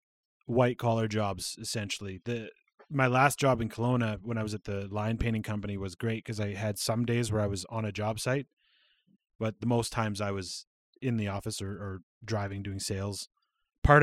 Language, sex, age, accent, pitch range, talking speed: English, male, 20-39, American, 105-125 Hz, 200 wpm